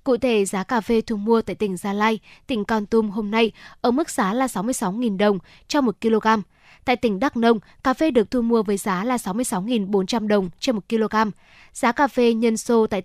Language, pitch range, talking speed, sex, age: Vietnamese, 205-245 Hz, 220 wpm, female, 10-29